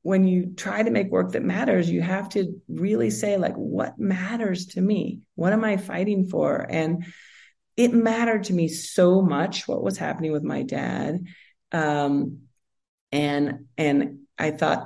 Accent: American